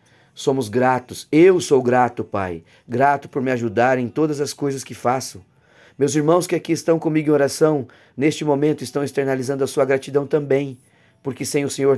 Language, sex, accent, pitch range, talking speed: Portuguese, male, Brazilian, 120-155 Hz, 180 wpm